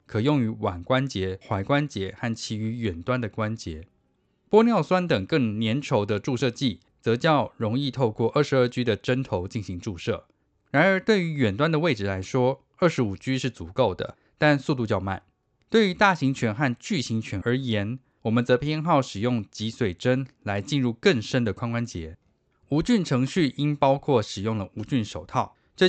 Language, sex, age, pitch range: Chinese, male, 20-39, 105-140 Hz